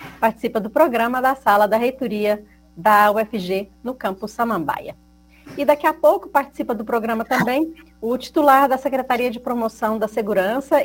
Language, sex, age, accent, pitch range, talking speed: Portuguese, female, 40-59, Brazilian, 205-255 Hz, 155 wpm